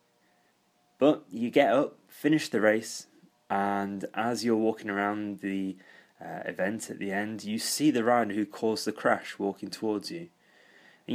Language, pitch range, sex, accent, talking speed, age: English, 95-120 Hz, male, British, 160 wpm, 20-39